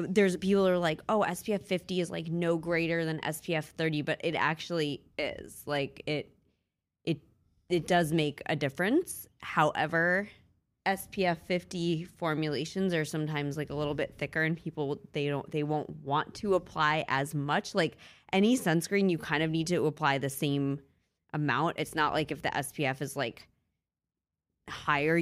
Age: 20-39